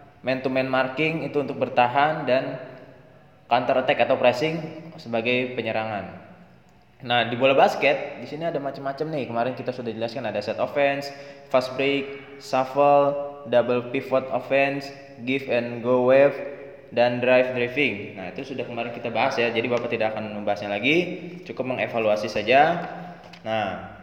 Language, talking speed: Indonesian, 150 wpm